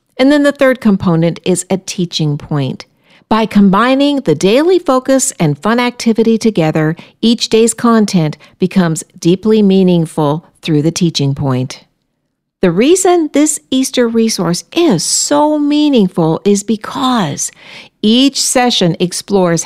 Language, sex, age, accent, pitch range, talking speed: English, female, 60-79, American, 165-245 Hz, 125 wpm